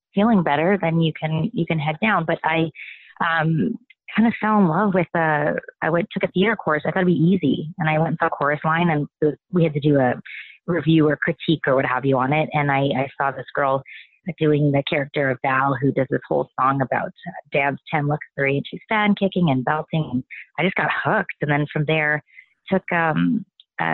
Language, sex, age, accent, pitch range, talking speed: English, female, 30-49, American, 140-175 Hz, 225 wpm